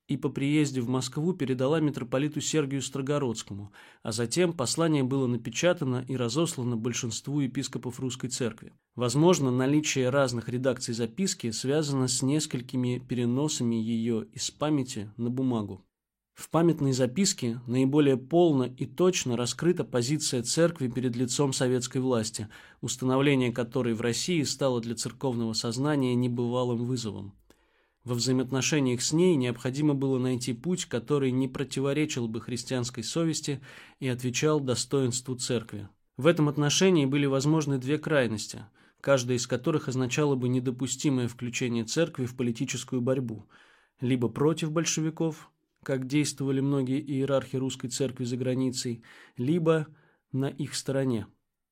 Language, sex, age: Russian, male, 20-39